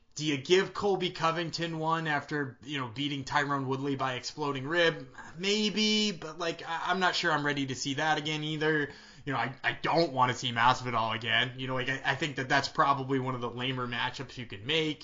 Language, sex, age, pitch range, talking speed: English, male, 20-39, 135-170 Hz, 220 wpm